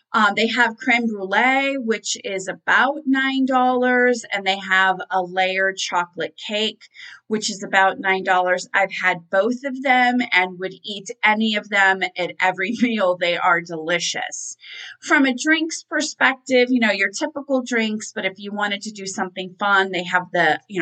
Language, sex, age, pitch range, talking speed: English, female, 30-49, 180-230 Hz, 165 wpm